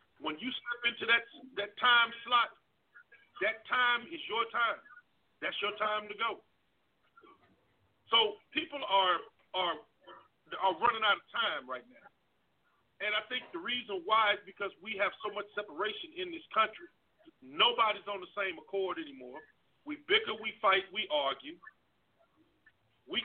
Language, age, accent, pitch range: English, 40-59, American, 210-340 Hz